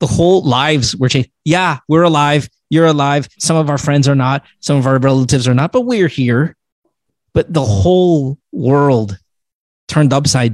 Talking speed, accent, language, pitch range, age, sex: 175 wpm, American, English, 135-170 Hz, 30-49, male